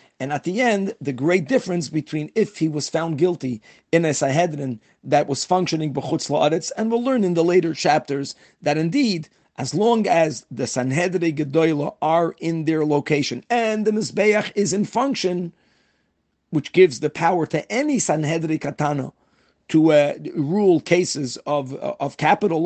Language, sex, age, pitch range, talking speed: English, male, 40-59, 150-185 Hz, 155 wpm